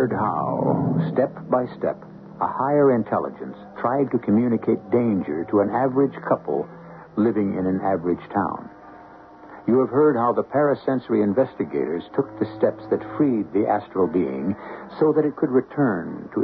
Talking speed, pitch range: 150 wpm, 100-155 Hz